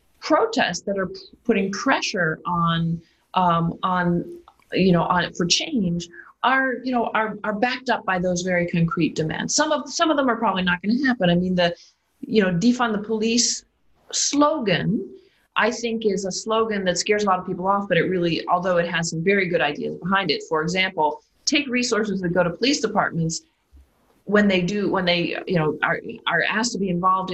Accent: American